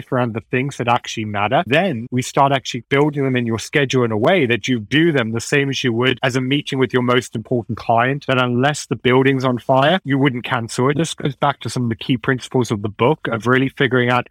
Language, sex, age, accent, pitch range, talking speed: English, male, 30-49, British, 120-145 Hz, 255 wpm